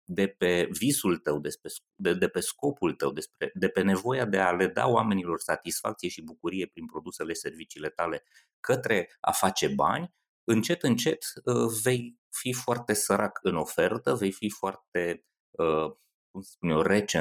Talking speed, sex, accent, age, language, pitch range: 150 wpm, male, native, 30-49, Romanian, 75-105 Hz